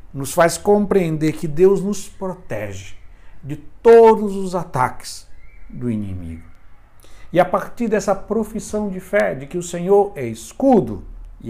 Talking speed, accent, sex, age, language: 140 wpm, Brazilian, male, 60-79, Portuguese